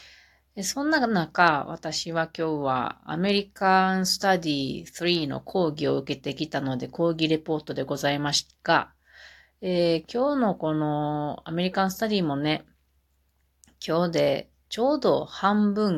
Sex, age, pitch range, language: female, 30-49, 145-190 Hz, Japanese